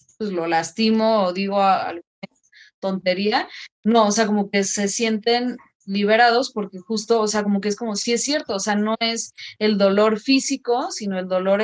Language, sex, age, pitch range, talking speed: Spanish, female, 20-39, 190-220 Hz, 195 wpm